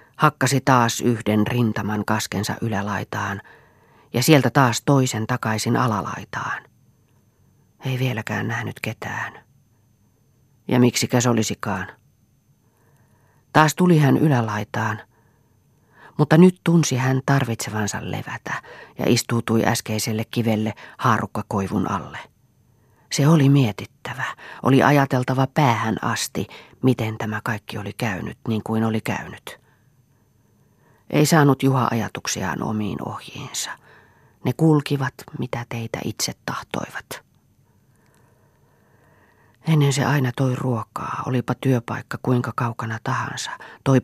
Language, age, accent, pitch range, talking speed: Finnish, 30-49, native, 110-130 Hz, 100 wpm